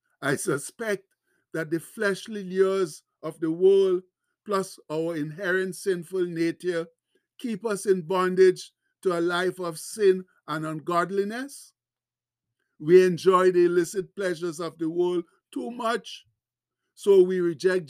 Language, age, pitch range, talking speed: English, 60-79, 170-200 Hz, 125 wpm